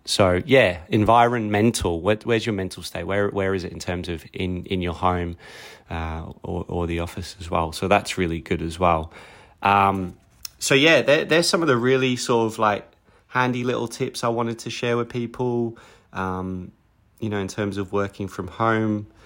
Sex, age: male, 30-49